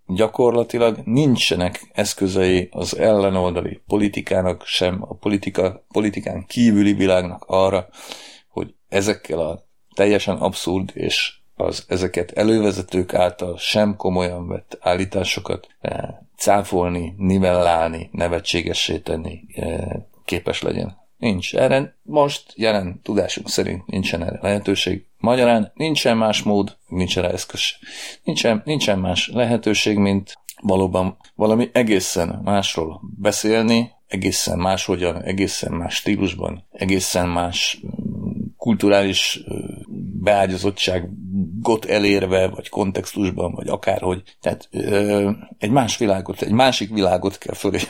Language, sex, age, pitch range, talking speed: Hungarian, male, 40-59, 90-105 Hz, 100 wpm